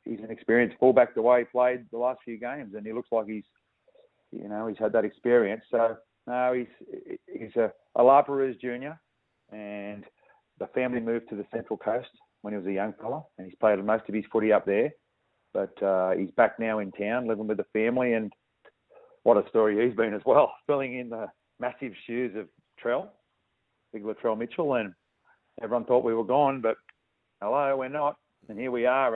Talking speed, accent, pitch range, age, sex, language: 200 wpm, Australian, 110-125 Hz, 40-59, male, English